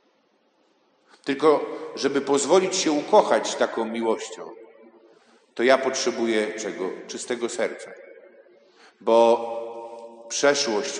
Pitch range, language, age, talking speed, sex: 120-175 Hz, Polish, 50-69, 80 wpm, male